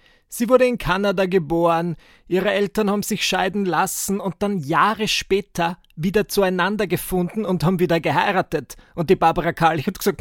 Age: 30-49